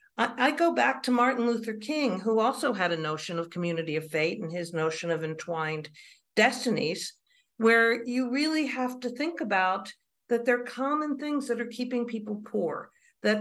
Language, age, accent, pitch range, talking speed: English, 50-69, American, 175-245 Hz, 180 wpm